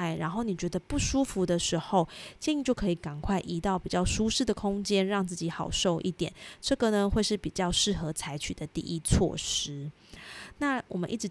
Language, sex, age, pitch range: Chinese, female, 20-39, 170-225 Hz